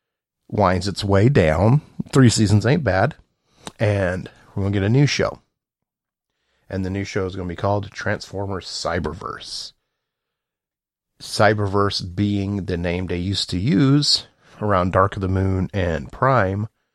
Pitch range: 95-115 Hz